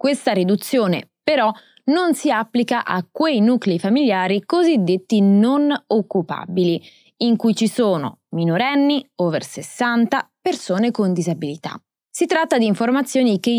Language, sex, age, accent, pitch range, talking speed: Italian, female, 20-39, native, 185-275 Hz, 125 wpm